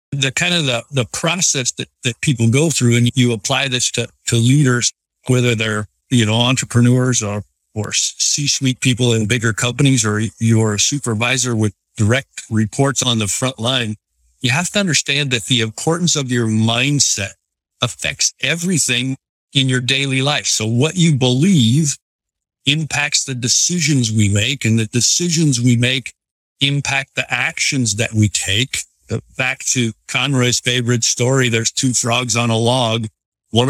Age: 50-69